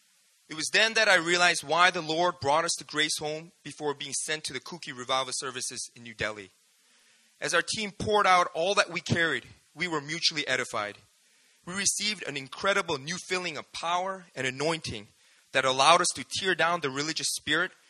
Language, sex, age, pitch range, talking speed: English, male, 30-49, 135-180 Hz, 190 wpm